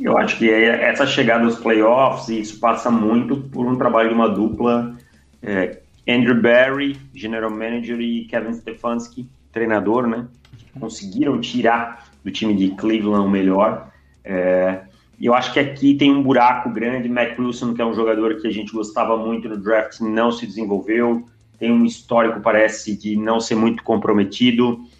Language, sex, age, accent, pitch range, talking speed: Portuguese, male, 30-49, Brazilian, 110-125 Hz, 160 wpm